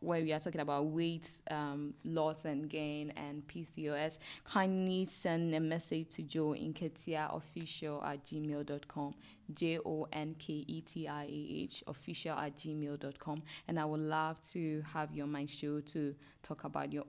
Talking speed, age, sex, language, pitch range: 170 wpm, 10-29, female, English, 150-170 Hz